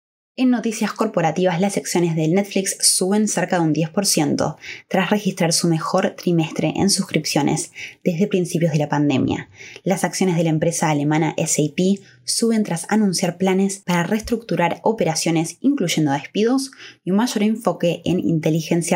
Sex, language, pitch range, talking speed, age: female, Spanish, 165-210 Hz, 145 wpm, 20-39